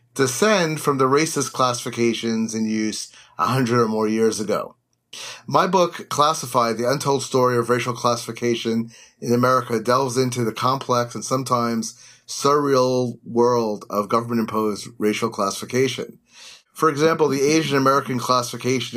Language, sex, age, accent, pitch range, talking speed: English, male, 30-49, American, 115-140 Hz, 135 wpm